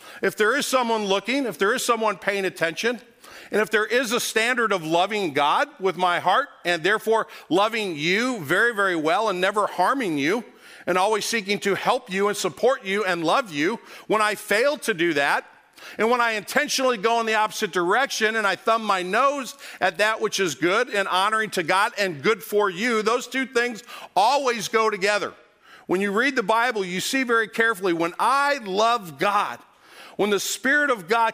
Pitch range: 180-225 Hz